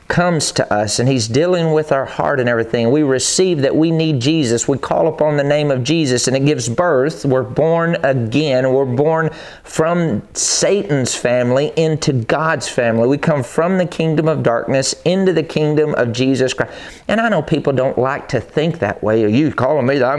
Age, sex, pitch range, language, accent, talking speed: 40-59, male, 100-155 Hz, English, American, 200 wpm